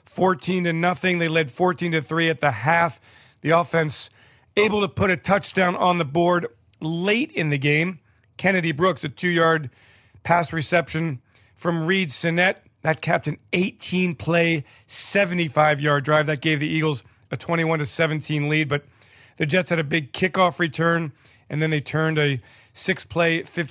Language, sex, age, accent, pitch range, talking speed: English, male, 40-59, American, 130-165 Hz, 160 wpm